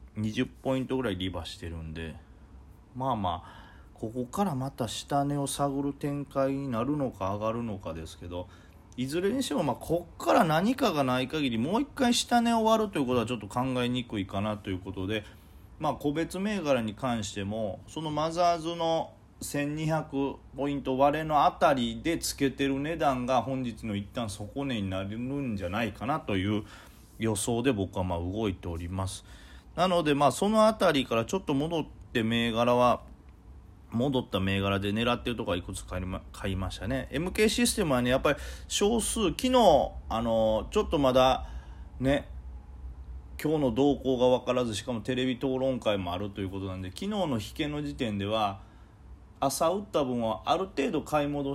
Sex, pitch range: male, 100-140 Hz